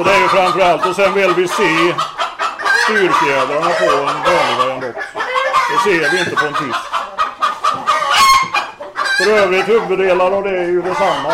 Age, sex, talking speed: 30-49, male, 155 wpm